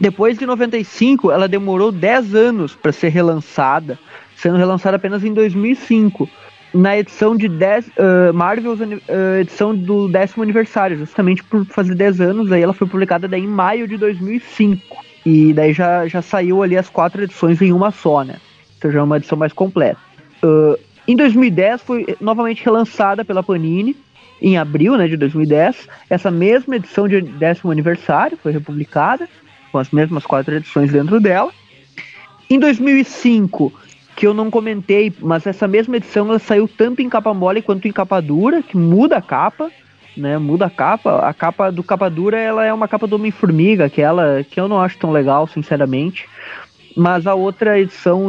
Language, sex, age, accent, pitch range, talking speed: Portuguese, male, 20-39, Brazilian, 165-220 Hz, 175 wpm